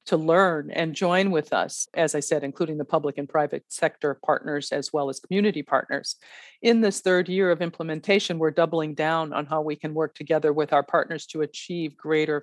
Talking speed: 205 wpm